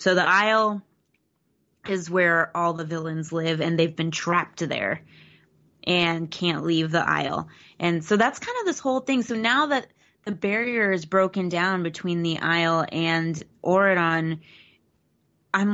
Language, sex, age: English, female, 20-39